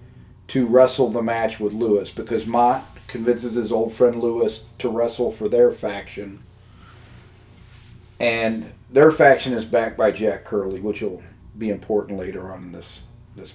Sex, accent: male, American